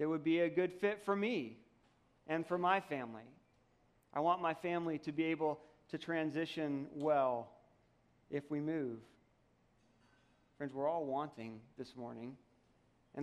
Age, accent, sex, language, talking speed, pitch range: 40-59, American, male, English, 145 wpm, 130-165 Hz